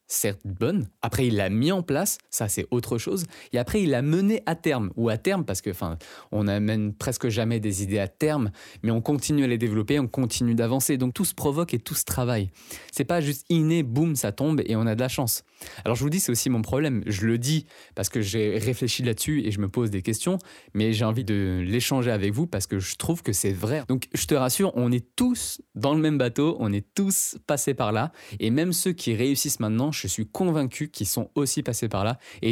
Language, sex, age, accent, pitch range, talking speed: English, male, 20-39, French, 105-140 Hz, 245 wpm